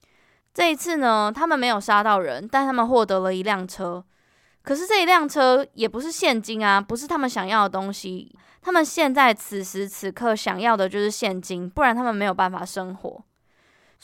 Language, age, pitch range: Chinese, 20-39, 200-270 Hz